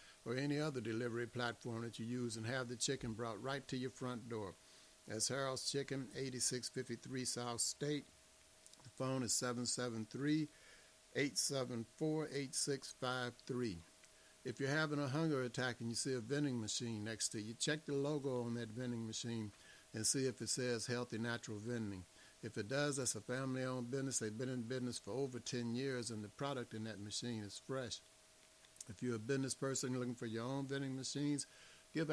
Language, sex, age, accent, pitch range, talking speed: English, male, 60-79, American, 115-135 Hz, 175 wpm